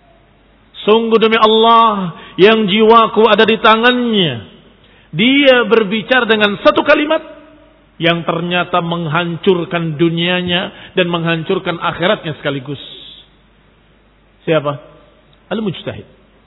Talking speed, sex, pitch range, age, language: 85 wpm, male, 150-225 Hz, 50-69, Indonesian